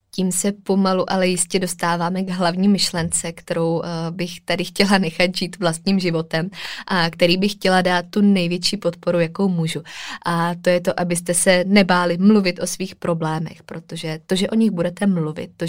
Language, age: Czech, 20-39